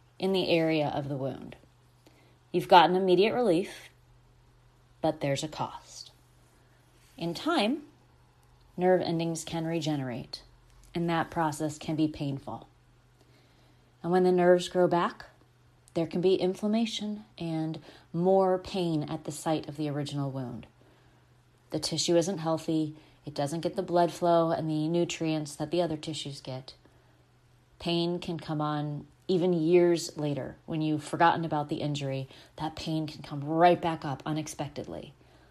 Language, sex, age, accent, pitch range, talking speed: English, female, 30-49, American, 140-175 Hz, 145 wpm